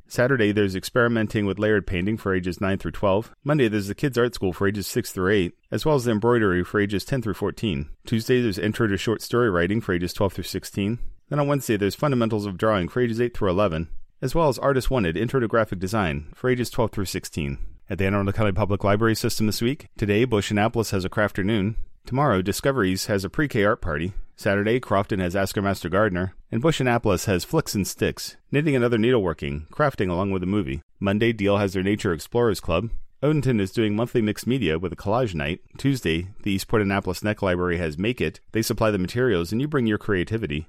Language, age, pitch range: English, 40-59, 95-115 Hz